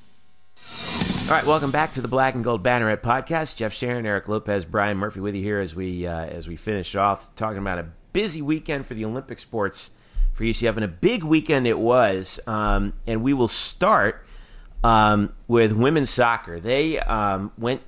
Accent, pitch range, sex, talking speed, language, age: American, 100-125 Hz, male, 190 wpm, English, 30-49